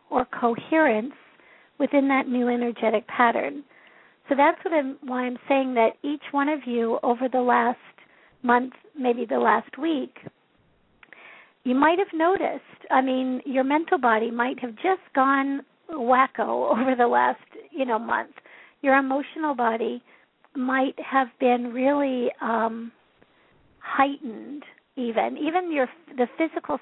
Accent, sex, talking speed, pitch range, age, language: American, female, 135 wpm, 240-285 Hz, 50-69, English